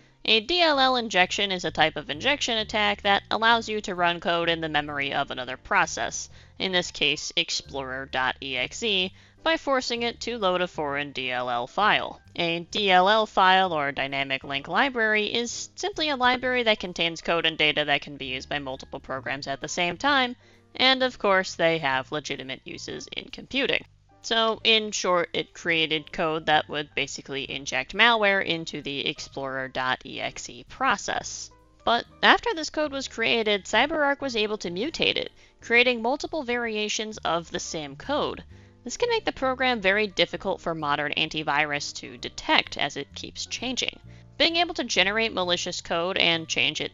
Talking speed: 165 wpm